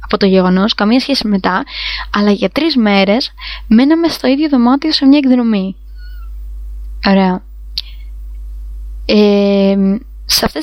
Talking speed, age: 115 wpm, 20-39